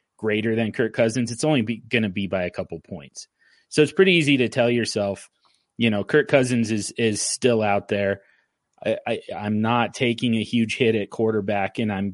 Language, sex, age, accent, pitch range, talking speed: English, male, 30-49, American, 100-120 Hz, 195 wpm